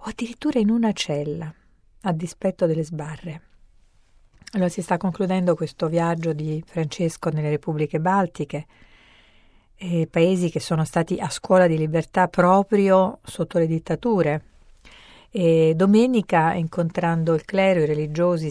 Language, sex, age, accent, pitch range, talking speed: Italian, female, 50-69, native, 155-180 Hz, 130 wpm